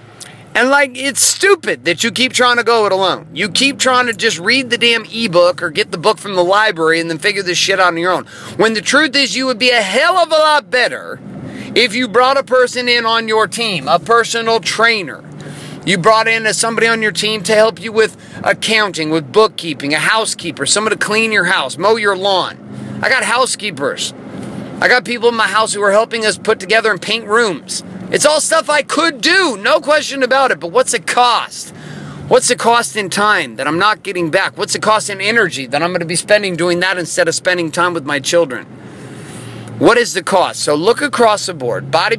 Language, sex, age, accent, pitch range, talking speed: English, male, 30-49, American, 175-235 Hz, 225 wpm